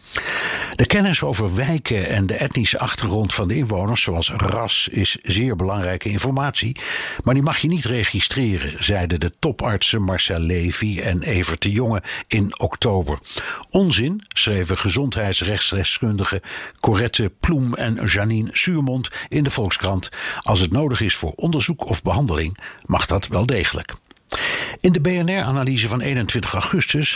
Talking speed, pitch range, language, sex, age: 140 wpm, 95-130 Hz, Dutch, male, 60-79